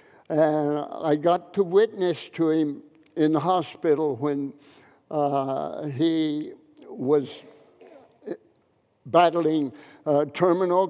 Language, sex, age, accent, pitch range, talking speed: English, male, 60-79, American, 150-180 Hz, 95 wpm